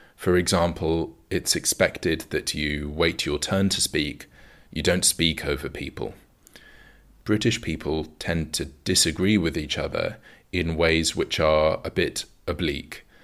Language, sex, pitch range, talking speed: English, male, 75-95 Hz, 140 wpm